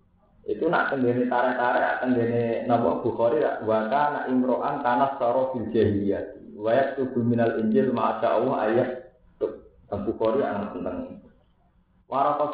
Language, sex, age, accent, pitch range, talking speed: Indonesian, male, 50-69, native, 110-140 Hz, 115 wpm